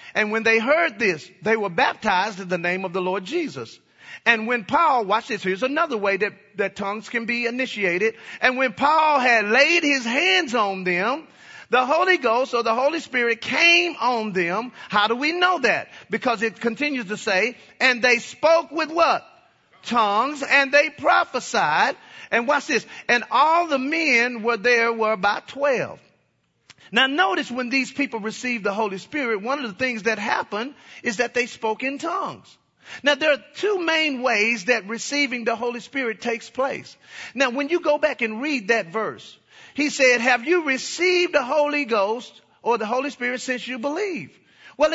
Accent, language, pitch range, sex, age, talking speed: American, English, 225-290 Hz, male, 40-59, 185 wpm